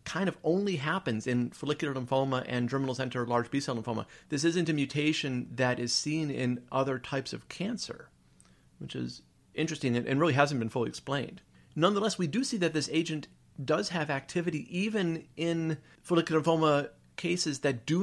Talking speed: 170 wpm